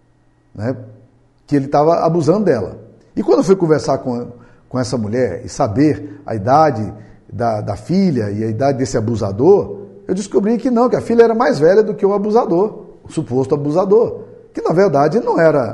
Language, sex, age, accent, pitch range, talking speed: Portuguese, male, 50-69, Brazilian, 120-185 Hz, 185 wpm